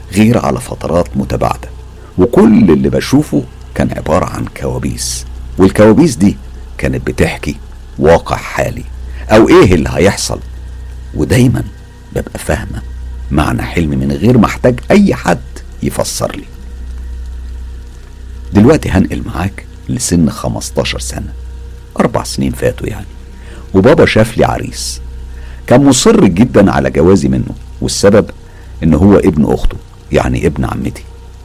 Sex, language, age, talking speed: male, Arabic, 50-69, 115 wpm